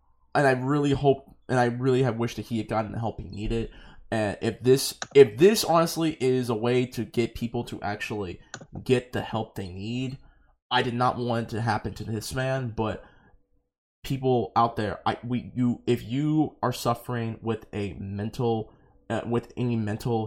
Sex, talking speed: male, 190 wpm